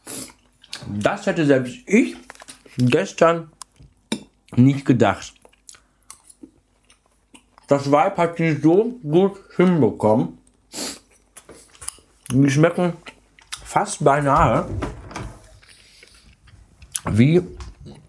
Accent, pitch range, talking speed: German, 100-135 Hz, 65 wpm